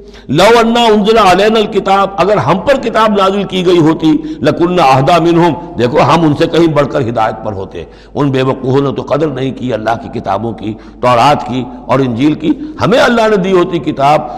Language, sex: Urdu, male